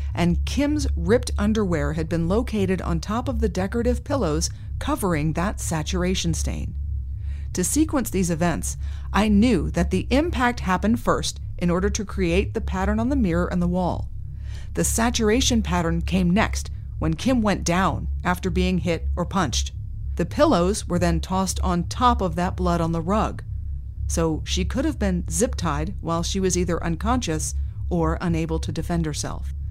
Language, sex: English, female